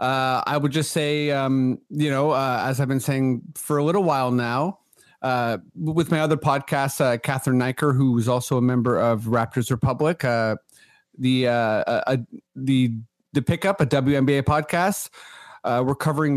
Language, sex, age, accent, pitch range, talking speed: English, male, 40-59, American, 135-155 Hz, 175 wpm